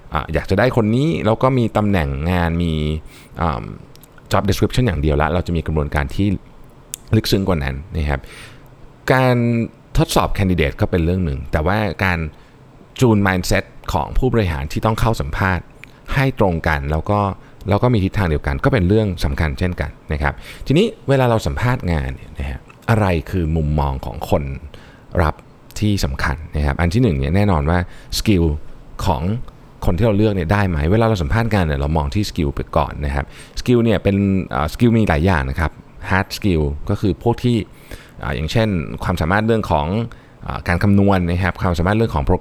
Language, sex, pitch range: Thai, male, 80-110 Hz